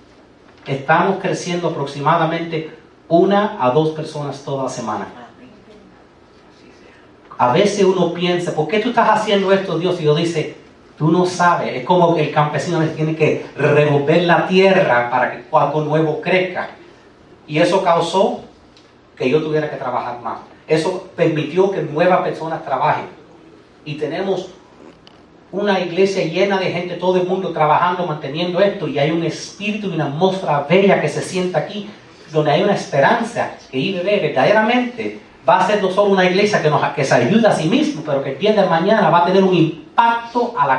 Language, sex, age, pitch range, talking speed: Spanish, male, 30-49, 150-185 Hz, 170 wpm